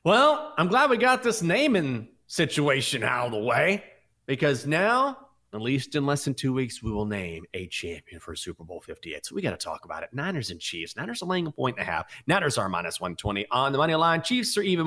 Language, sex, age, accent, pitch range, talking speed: English, male, 30-49, American, 115-160 Hz, 240 wpm